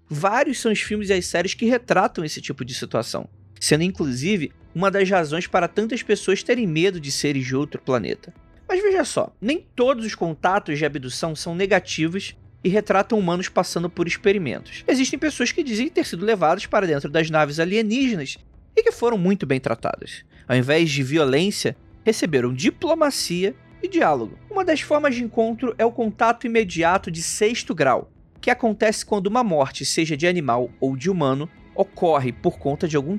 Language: Portuguese